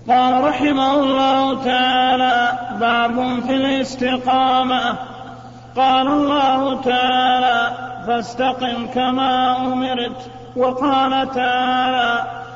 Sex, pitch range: male, 245-265 Hz